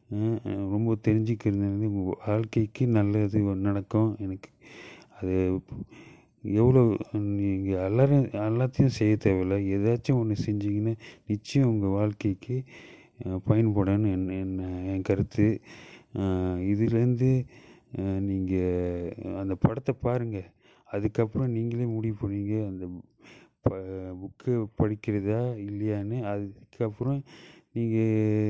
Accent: Indian